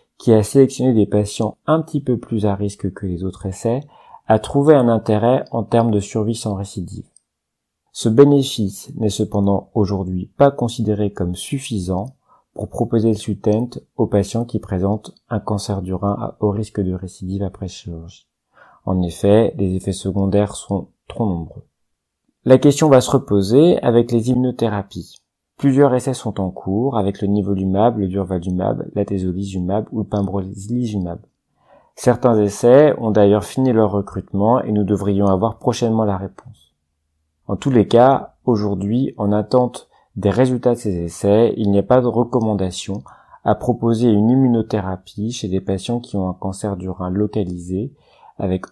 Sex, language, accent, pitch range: male, French, French, 95-115 Hz